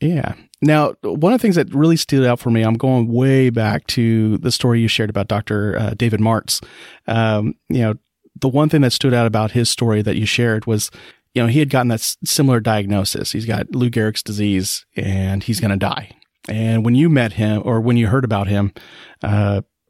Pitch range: 105-130 Hz